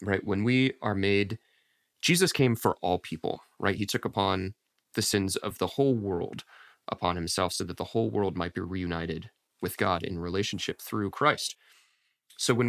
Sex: male